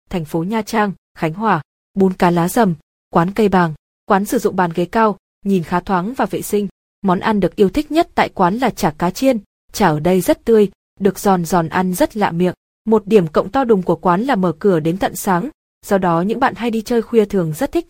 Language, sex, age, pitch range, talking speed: Vietnamese, female, 20-39, 180-225 Hz, 245 wpm